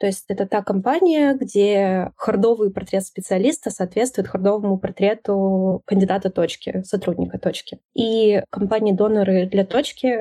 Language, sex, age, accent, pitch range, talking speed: Russian, female, 20-39, native, 195-220 Hz, 120 wpm